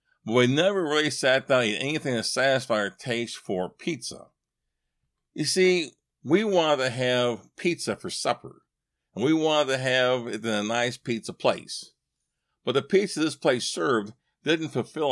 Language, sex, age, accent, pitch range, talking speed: English, male, 50-69, American, 115-145 Hz, 170 wpm